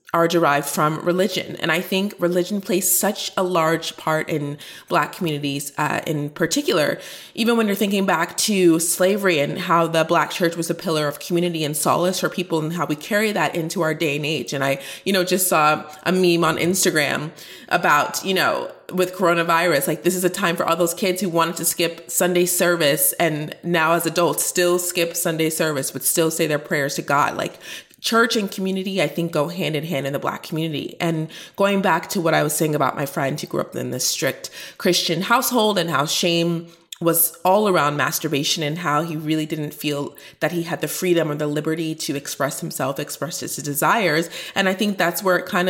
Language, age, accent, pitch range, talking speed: English, 20-39, American, 155-185 Hz, 215 wpm